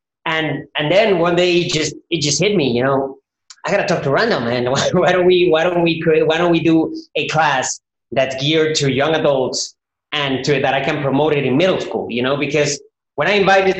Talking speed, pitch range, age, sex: 230 wpm, 145-180 Hz, 30-49, male